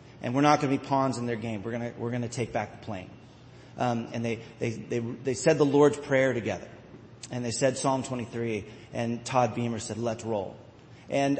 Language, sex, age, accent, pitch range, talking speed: English, male, 40-59, American, 125-160 Hz, 225 wpm